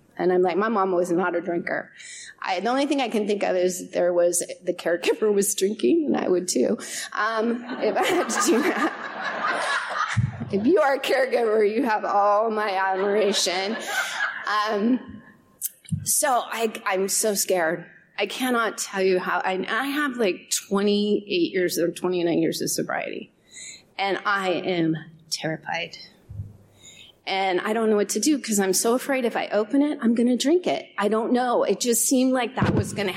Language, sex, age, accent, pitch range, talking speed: English, female, 30-49, American, 185-235 Hz, 185 wpm